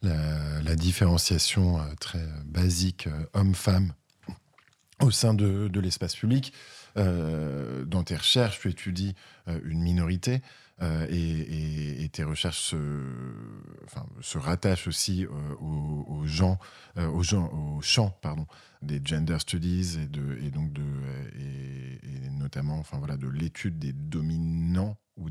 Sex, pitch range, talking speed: male, 75-95 Hz, 150 wpm